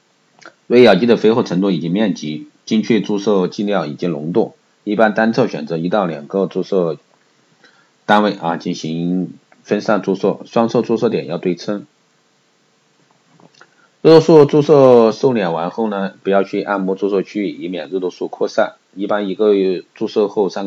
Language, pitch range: Chinese, 85-100 Hz